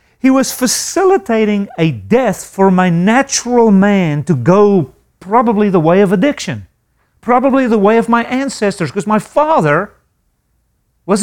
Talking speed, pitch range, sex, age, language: 140 wpm, 160-265 Hz, male, 40-59, English